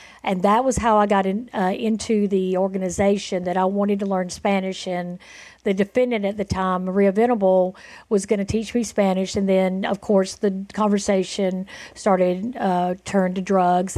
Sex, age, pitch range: female, 50-69, 185-215 Hz